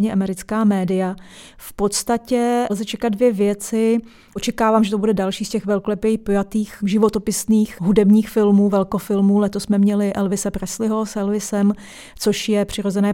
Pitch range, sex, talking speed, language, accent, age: 195-210 Hz, female, 140 wpm, Czech, native, 30-49